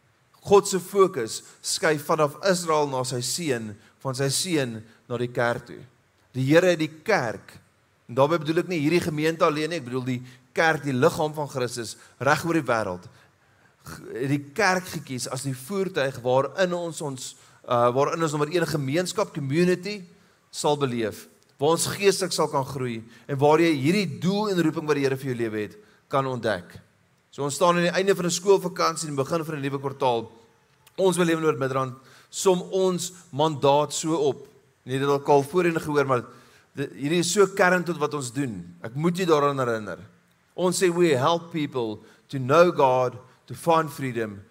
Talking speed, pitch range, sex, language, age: 185 wpm, 125-170 Hz, male, English, 30-49